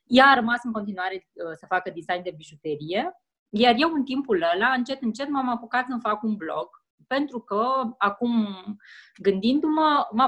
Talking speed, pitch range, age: 170 wpm, 210-270 Hz, 20-39